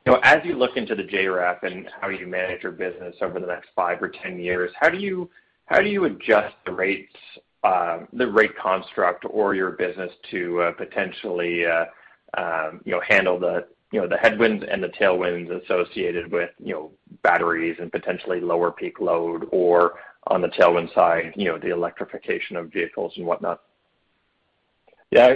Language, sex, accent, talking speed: English, male, American, 180 wpm